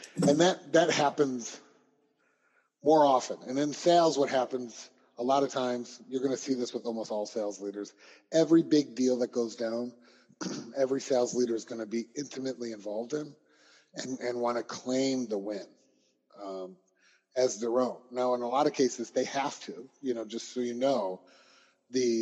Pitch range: 110-130 Hz